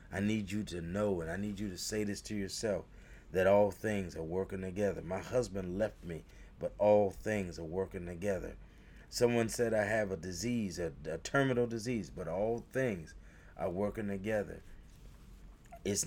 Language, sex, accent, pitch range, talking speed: English, male, American, 90-115 Hz, 175 wpm